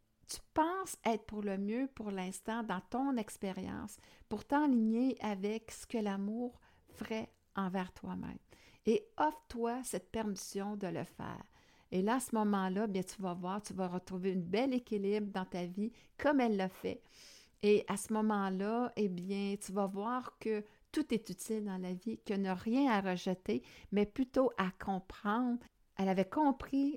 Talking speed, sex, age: 170 wpm, female, 60-79